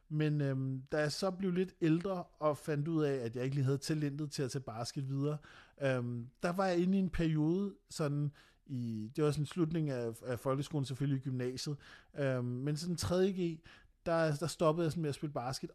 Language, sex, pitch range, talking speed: Danish, male, 135-165 Hz, 215 wpm